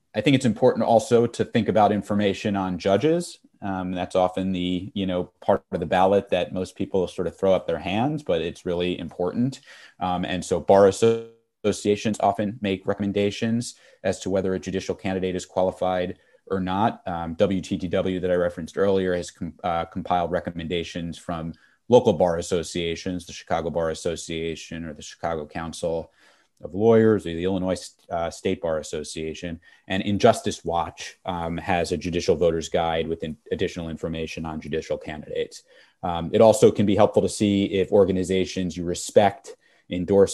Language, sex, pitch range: English, male, 80-95 Hz